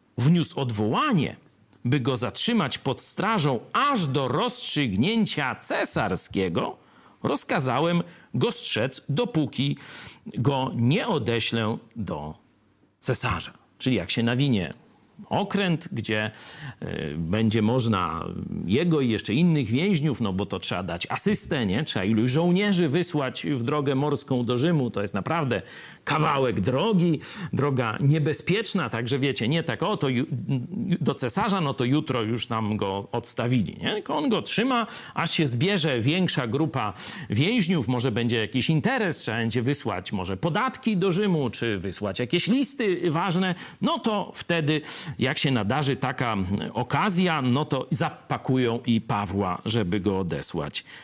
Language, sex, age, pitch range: Polish, male, 50-69, 115-175 Hz